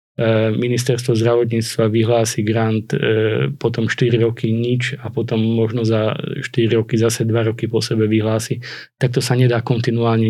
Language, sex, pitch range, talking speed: Slovak, male, 115-125 Hz, 145 wpm